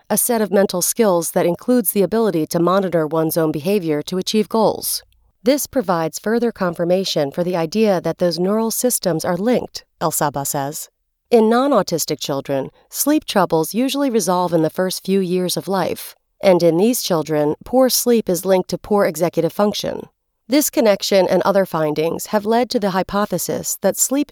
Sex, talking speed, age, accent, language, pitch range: female, 175 wpm, 40-59, American, English, 170-225 Hz